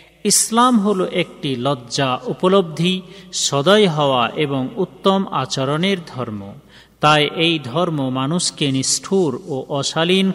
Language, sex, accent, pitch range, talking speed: Bengali, male, native, 130-185 Hz, 105 wpm